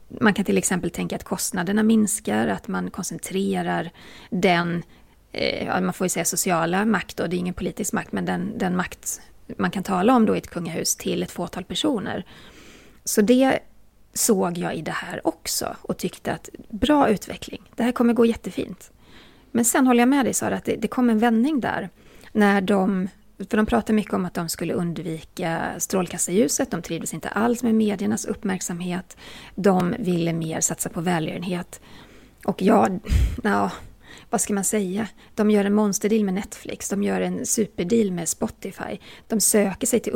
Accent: native